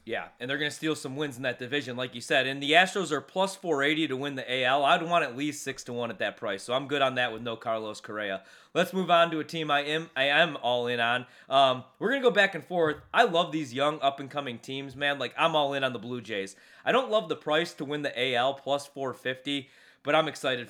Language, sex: English, male